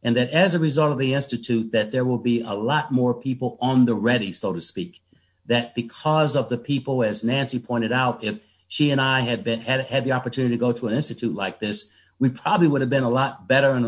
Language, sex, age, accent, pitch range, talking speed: English, male, 50-69, American, 115-140 Hz, 240 wpm